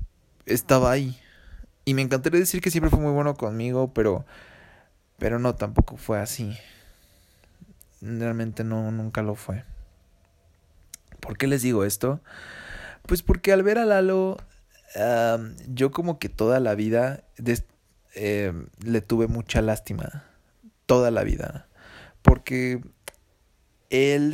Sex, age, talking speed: male, 20-39, 125 wpm